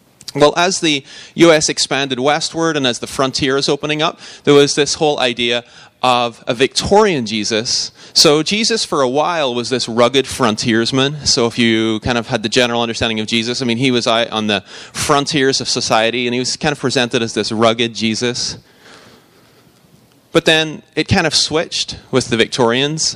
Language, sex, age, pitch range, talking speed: English, male, 30-49, 115-145 Hz, 180 wpm